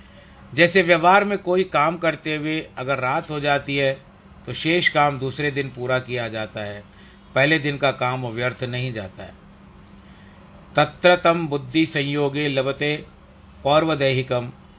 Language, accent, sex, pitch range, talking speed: Hindi, native, male, 120-150 Hz, 140 wpm